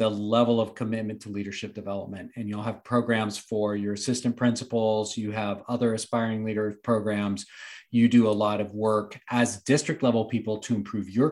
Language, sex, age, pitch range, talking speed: English, male, 40-59, 105-125 Hz, 180 wpm